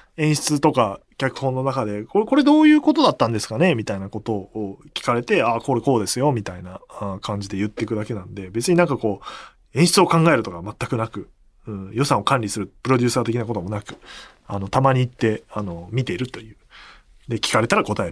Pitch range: 105-170 Hz